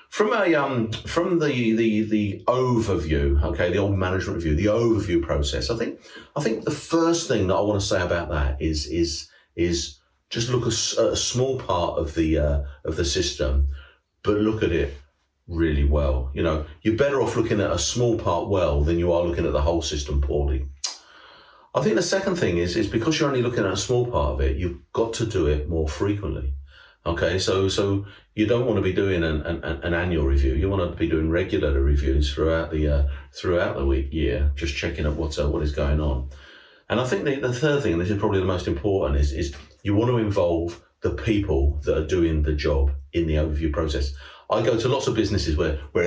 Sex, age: male, 40-59